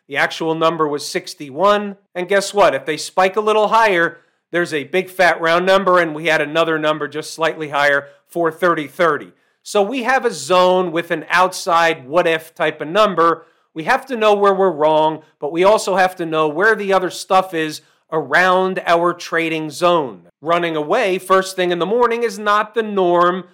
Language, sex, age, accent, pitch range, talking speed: English, male, 40-59, American, 155-190 Hz, 190 wpm